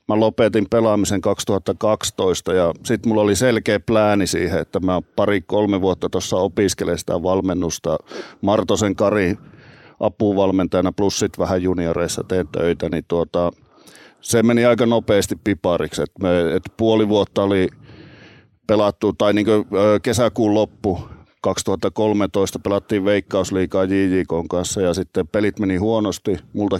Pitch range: 90-110 Hz